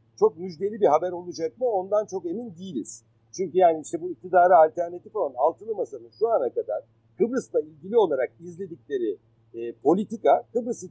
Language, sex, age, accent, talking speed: Turkish, male, 50-69, native, 160 wpm